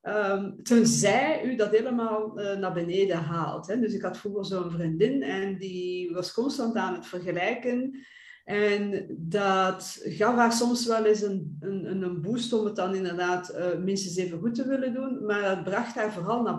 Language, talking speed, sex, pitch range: English, 175 wpm, female, 185-235 Hz